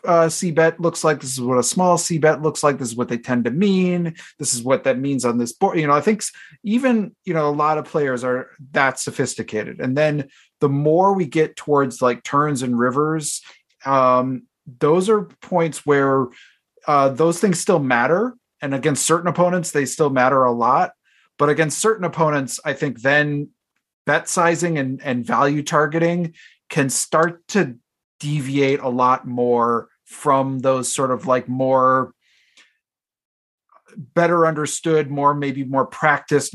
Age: 30-49